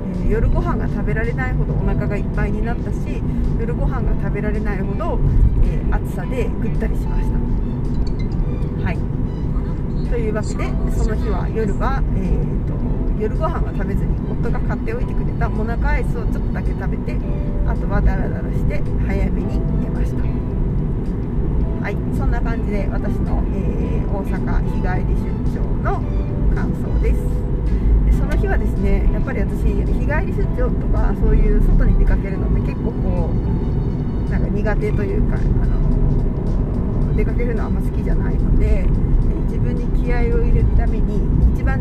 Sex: female